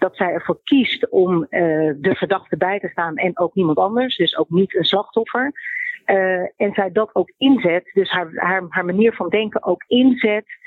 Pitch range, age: 170-200 Hz, 50-69